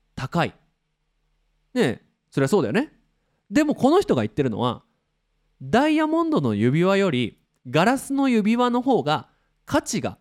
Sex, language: male, Japanese